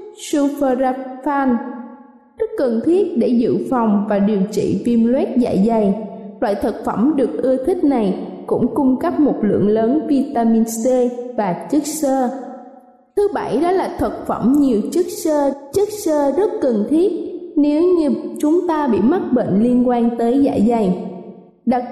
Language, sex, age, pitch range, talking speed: Vietnamese, female, 20-39, 230-310 Hz, 160 wpm